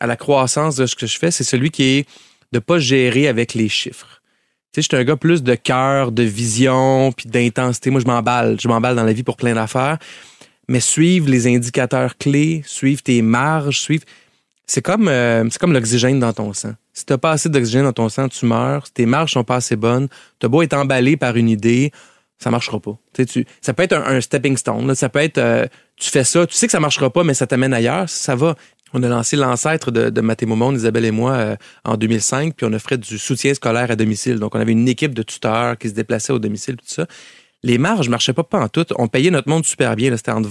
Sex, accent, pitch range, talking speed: male, Canadian, 115-140 Hz, 260 wpm